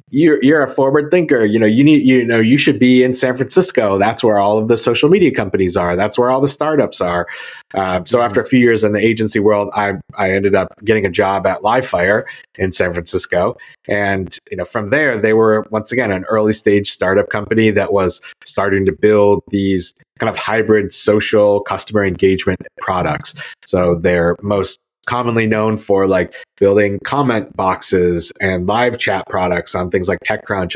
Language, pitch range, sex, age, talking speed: English, 100-120 Hz, male, 30-49, 195 wpm